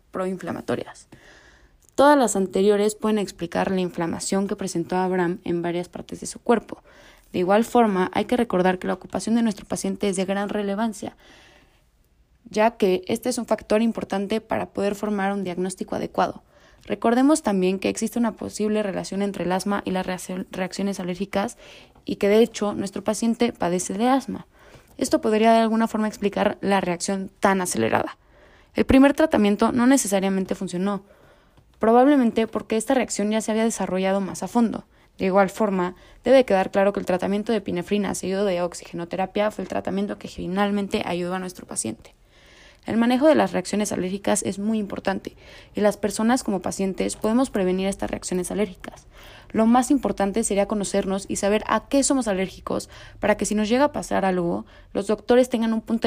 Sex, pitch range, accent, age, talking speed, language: female, 190-225 Hz, Mexican, 20-39, 175 wpm, English